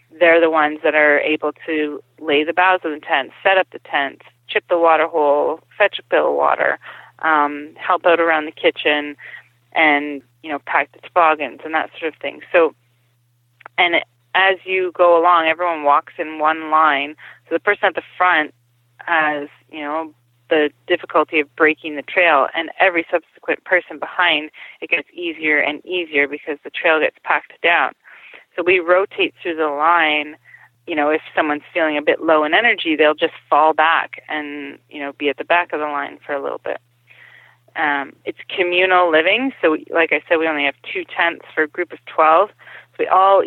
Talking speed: 195 wpm